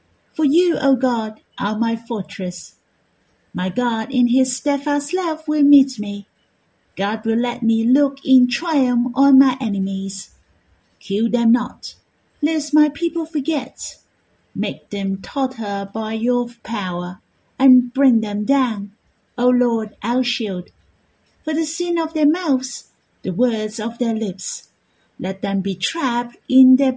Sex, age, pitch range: female, 50-69, 205-265 Hz